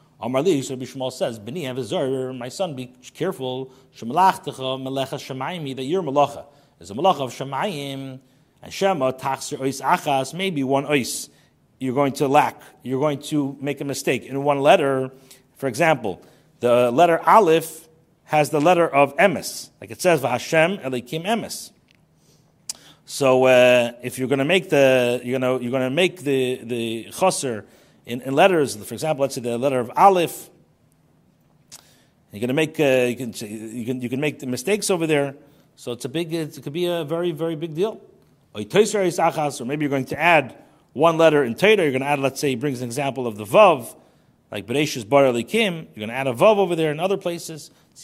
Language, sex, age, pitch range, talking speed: English, male, 40-59, 130-165 Hz, 170 wpm